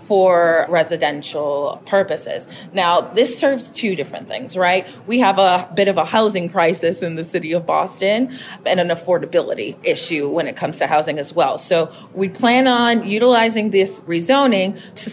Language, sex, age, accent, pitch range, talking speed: English, female, 30-49, American, 175-220 Hz, 165 wpm